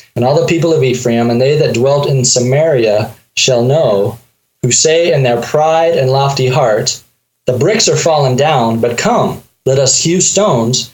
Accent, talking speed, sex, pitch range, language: American, 180 wpm, male, 130-160 Hz, English